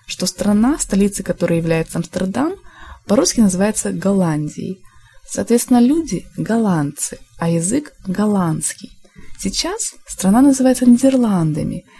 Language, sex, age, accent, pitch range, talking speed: Russian, female, 20-39, native, 180-260 Hz, 95 wpm